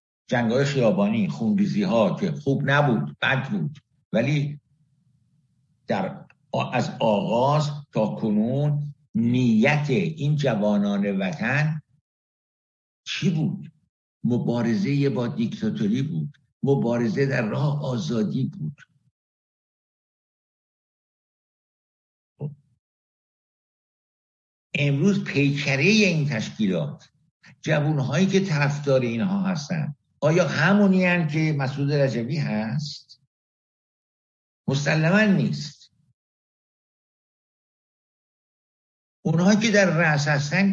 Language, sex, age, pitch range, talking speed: Persian, male, 60-79, 135-185 Hz, 75 wpm